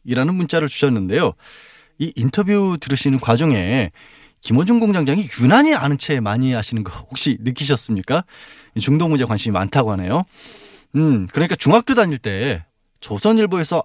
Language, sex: Korean, male